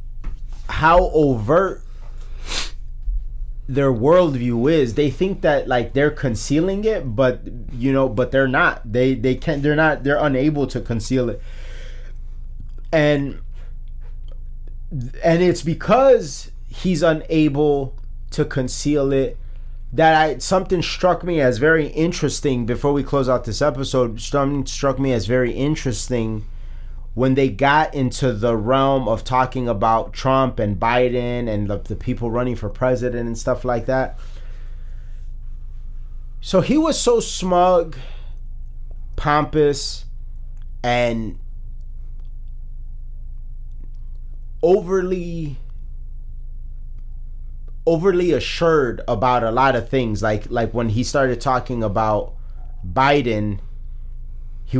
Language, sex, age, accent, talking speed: English, male, 30-49, American, 115 wpm